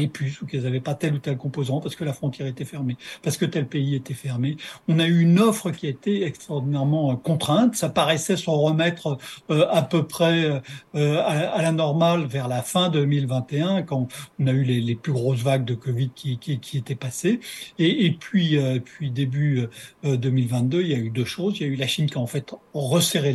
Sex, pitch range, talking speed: male, 135-175 Hz, 230 wpm